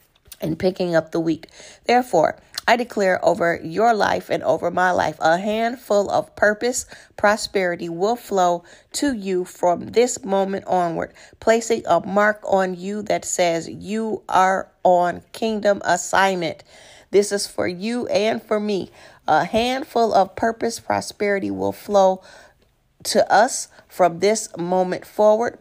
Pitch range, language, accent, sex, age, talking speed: 180-220 Hz, English, American, female, 40-59, 140 wpm